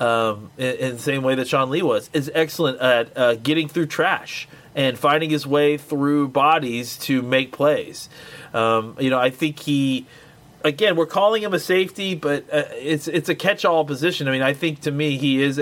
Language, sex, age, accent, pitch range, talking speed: English, male, 30-49, American, 130-155 Hz, 205 wpm